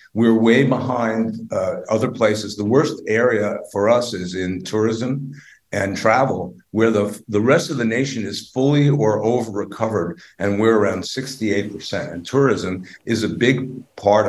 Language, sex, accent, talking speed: English, male, American, 160 wpm